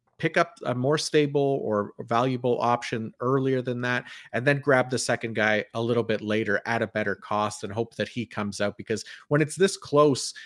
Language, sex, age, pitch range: English, male, 30-49, 115-140 Hz